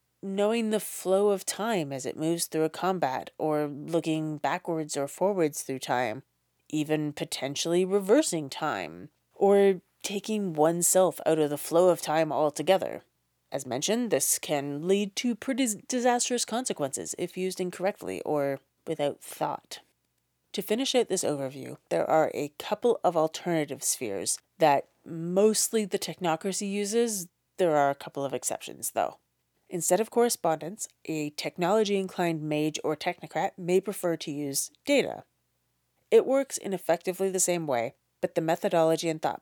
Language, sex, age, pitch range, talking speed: English, female, 30-49, 145-195 Hz, 150 wpm